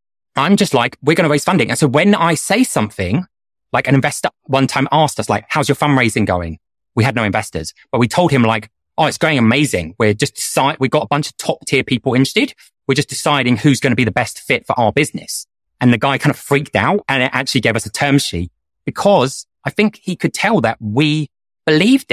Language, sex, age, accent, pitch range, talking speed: English, male, 30-49, British, 110-150 Hz, 235 wpm